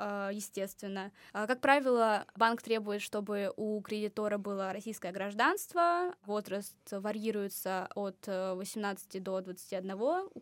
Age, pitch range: 20-39, 200-235 Hz